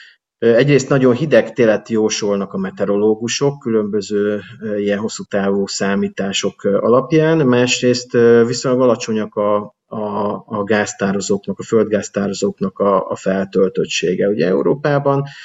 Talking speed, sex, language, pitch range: 105 wpm, male, Hungarian, 100-120 Hz